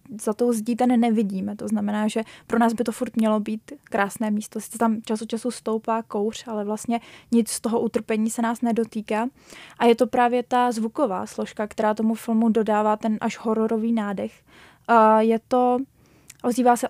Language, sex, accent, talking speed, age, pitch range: Czech, female, native, 170 wpm, 20-39, 220-245 Hz